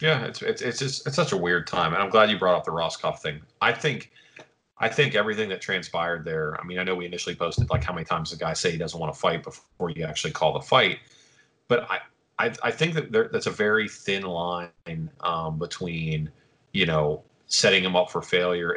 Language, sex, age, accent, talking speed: English, male, 30-49, American, 230 wpm